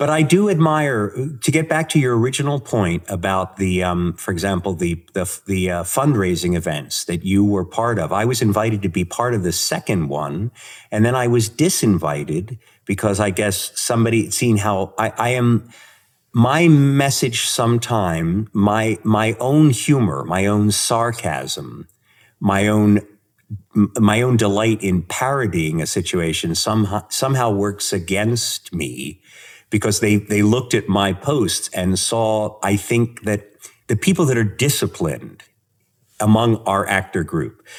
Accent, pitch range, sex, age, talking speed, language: American, 95-120 Hz, male, 50-69, 155 wpm, English